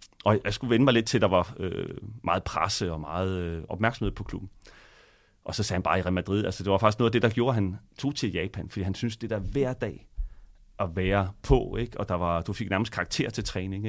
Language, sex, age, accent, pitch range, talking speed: Danish, male, 30-49, native, 95-115 Hz, 265 wpm